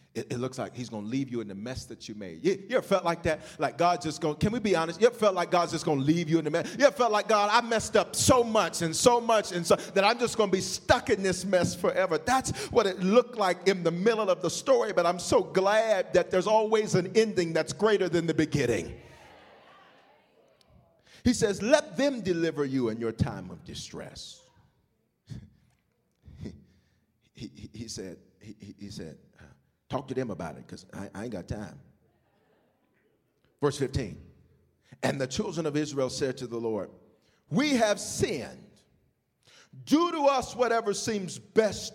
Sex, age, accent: male, 40-59, American